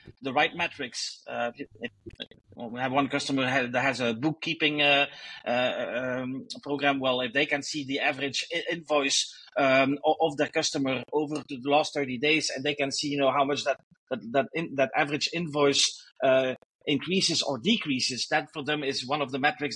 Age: 30-49